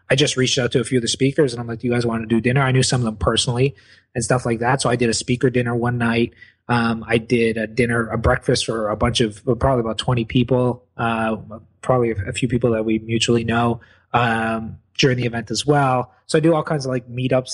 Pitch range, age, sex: 115-135 Hz, 20-39, male